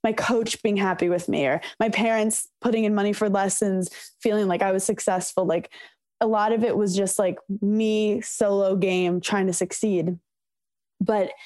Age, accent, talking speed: 10-29, American, 180 wpm